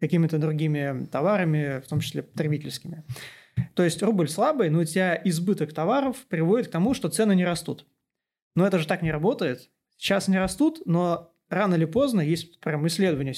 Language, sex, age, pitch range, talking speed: Turkish, male, 20-39, 155-205 Hz, 175 wpm